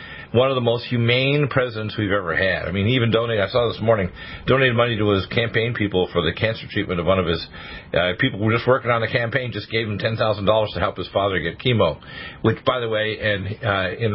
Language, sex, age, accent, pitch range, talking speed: English, male, 50-69, American, 100-125 Hz, 245 wpm